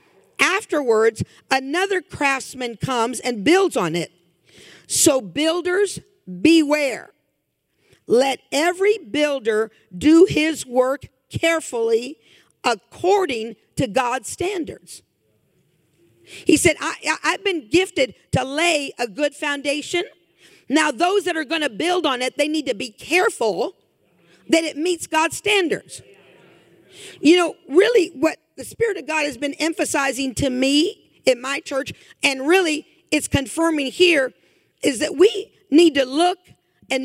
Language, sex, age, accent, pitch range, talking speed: English, female, 50-69, American, 280-365 Hz, 130 wpm